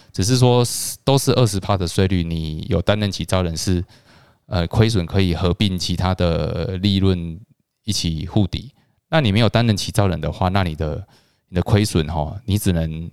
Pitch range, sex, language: 85-110 Hz, male, Chinese